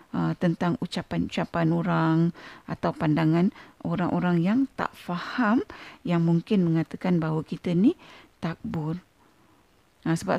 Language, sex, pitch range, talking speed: Malay, female, 175-220 Hz, 110 wpm